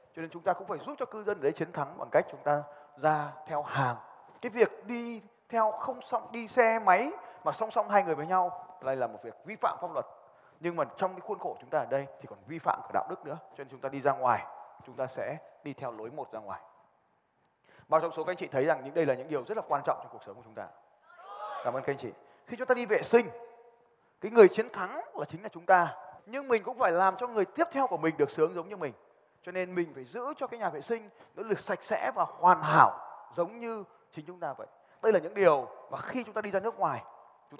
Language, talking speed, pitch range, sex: Vietnamese, 275 wpm, 140-225 Hz, male